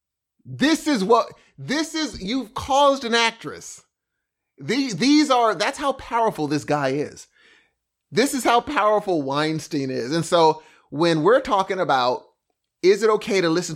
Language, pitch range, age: English, 140-210 Hz, 30-49